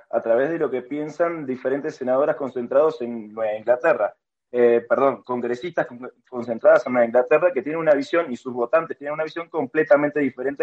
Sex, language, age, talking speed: male, Spanish, 20-39, 170 wpm